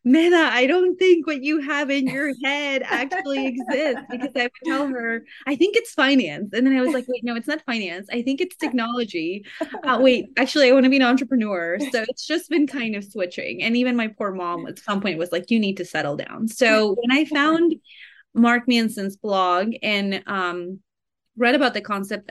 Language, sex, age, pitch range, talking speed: English, female, 20-39, 195-260 Hz, 215 wpm